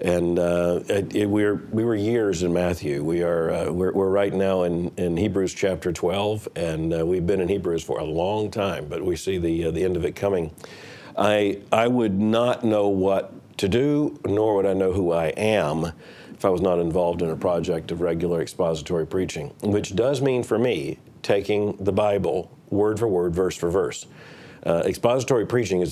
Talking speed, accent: 200 wpm, American